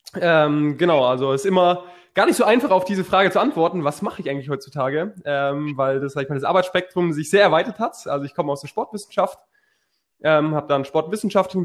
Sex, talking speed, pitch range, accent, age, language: male, 215 wpm, 140-180 Hz, German, 20-39, German